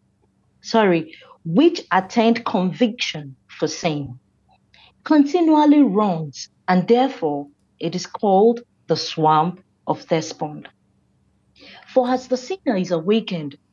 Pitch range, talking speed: 155-230 Hz, 100 wpm